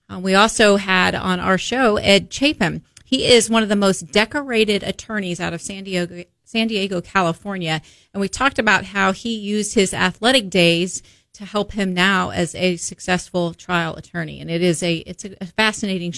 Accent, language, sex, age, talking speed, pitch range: American, English, female, 30-49, 180 wpm, 185-235 Hz